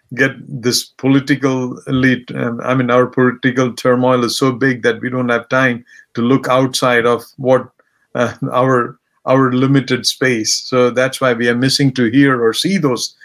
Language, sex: English, male